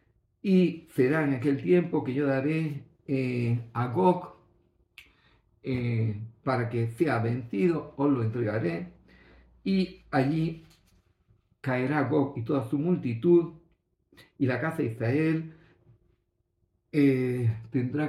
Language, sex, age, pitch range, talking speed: Greek, male, 50-69, 115-150 Hz, 115 wpm